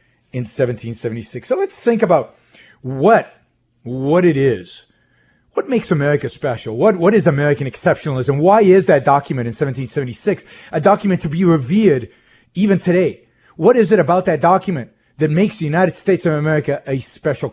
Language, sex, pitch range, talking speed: English, male, 125-185 Hz, 160 wpm